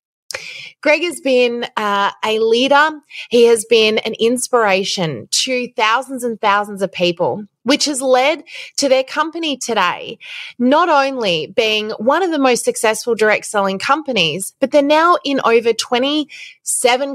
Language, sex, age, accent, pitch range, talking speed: English, female, 20-39, New Zealand, 180-245 Hz, 140 wpm